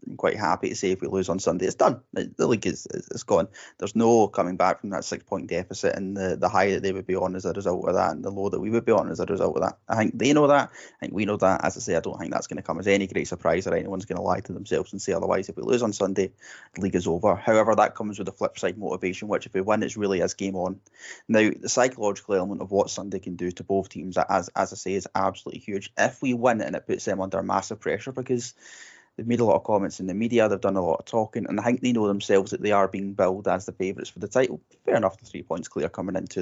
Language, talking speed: English, 300 wpm